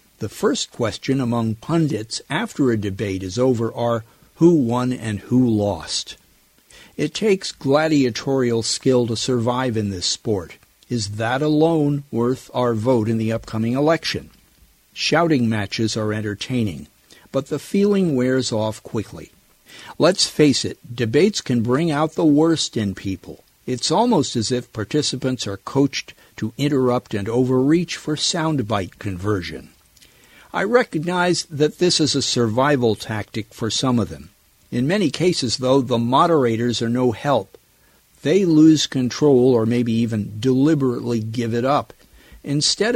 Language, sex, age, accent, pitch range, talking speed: English, male, 50-69, American, 115-145 Hz, 140 wpm